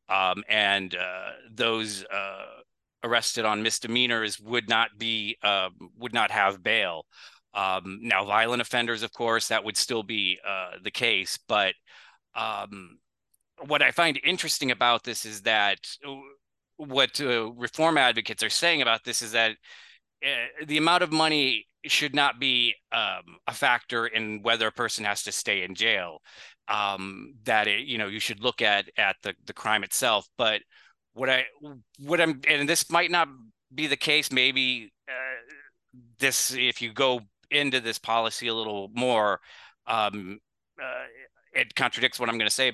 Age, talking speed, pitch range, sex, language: 30-49, 165 wpm, 110-135 Hz, male, English